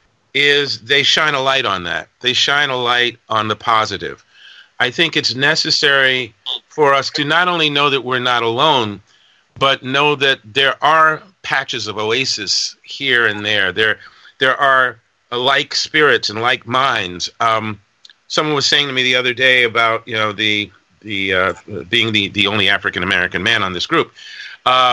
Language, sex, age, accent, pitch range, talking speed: English, male, 40-59, American, 115-145 Hz, 175 wpm